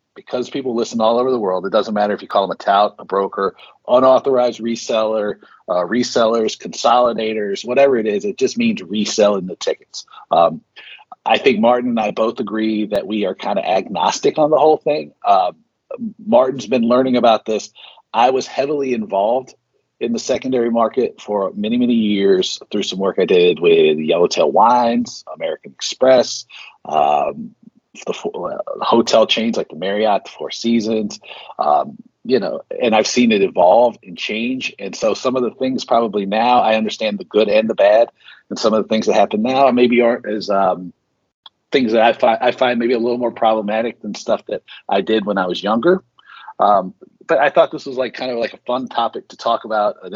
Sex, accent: male, American